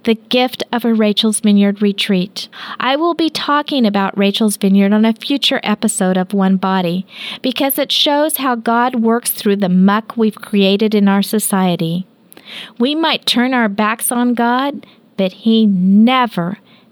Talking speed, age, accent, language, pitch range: 160 wpm, 50-69, American, English, 200-245 Hz